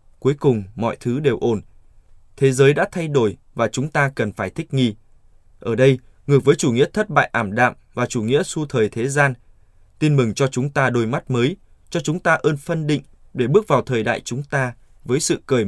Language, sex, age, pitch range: Vietnamese, male, 20-39, 105-145 Hz